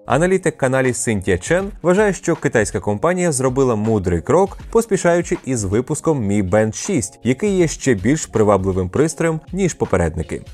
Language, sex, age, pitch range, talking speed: Ukrainian, male, 20-39, 100-160 Hz, 140 wpm